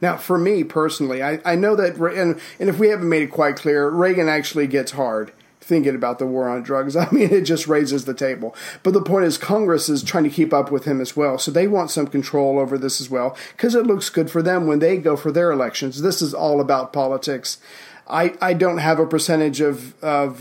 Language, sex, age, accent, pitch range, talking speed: English, male, 40-59, American, 140-170 Hz, 235 wpm